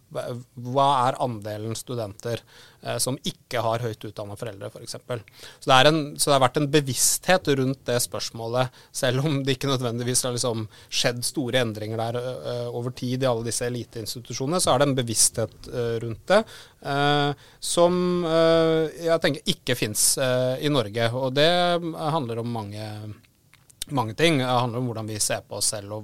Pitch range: 110-135 Hz